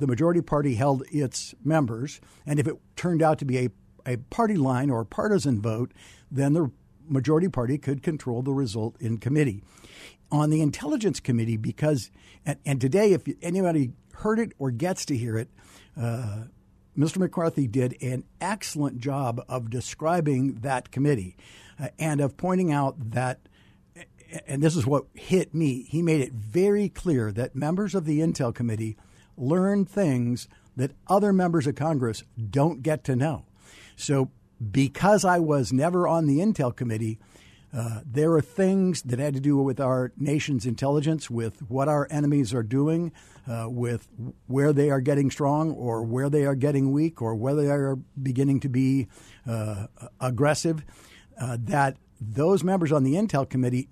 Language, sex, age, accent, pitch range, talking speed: English, male, 60-79, American, 120-155 Hz, 165 wpm